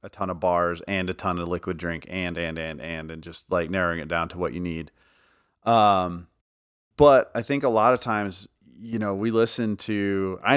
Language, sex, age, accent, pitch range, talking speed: English, male, 30-49, American, 85-105 Hz, 215 wpm